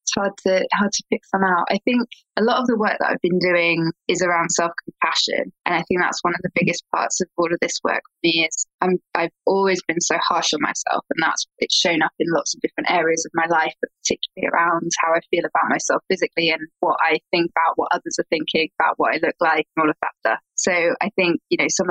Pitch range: 170-190 Hz